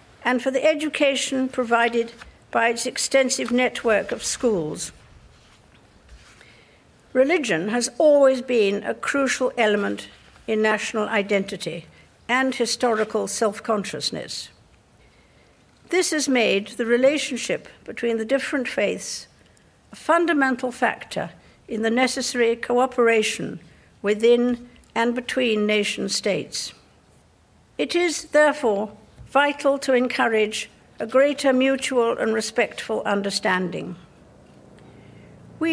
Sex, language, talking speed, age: female, English, 95 wpm, 60-79